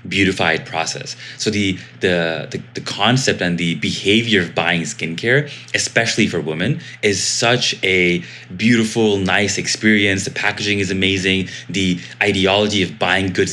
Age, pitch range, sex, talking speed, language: 20-39, 85-110 Hz, male, 140 wpm, English